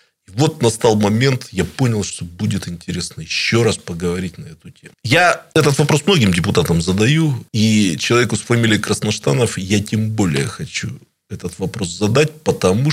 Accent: native